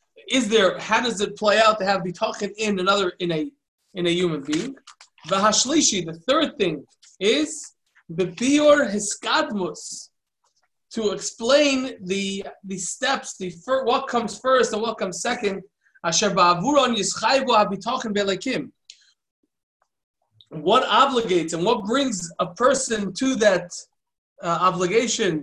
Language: English